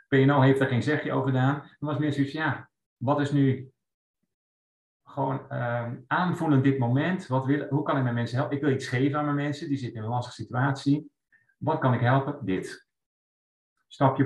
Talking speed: 200 wpm